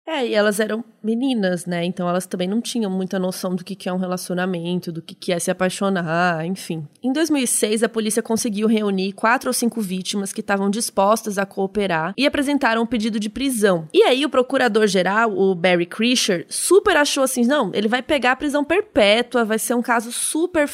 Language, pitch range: Portuguese, 195-245 Hz